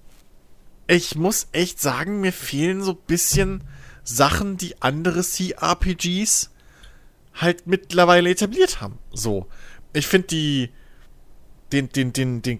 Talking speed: 120 wpm